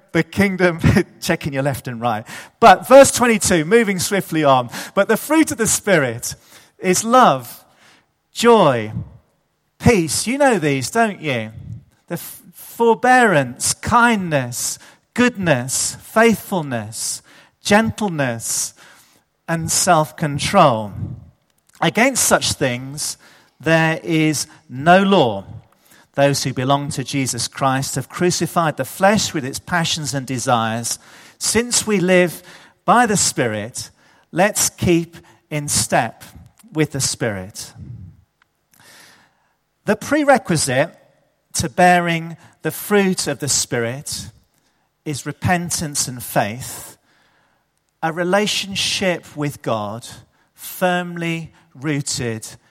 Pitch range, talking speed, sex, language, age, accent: 125-185 Hz, 100 wpm, male, English, 40-59, British